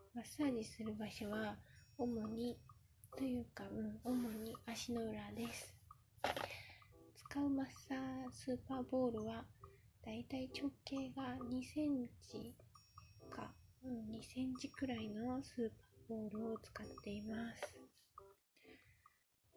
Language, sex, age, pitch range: Japanese, female, 20-39, 220-260 Hz